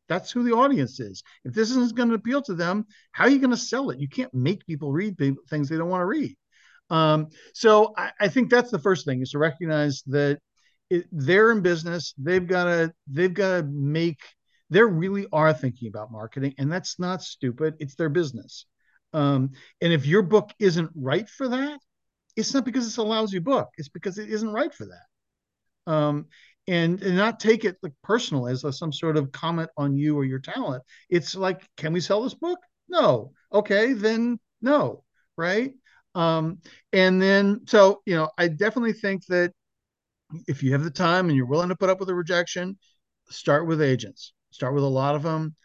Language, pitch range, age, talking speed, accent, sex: English, 145-200 Hz, 50-69, 200 wpm, American, male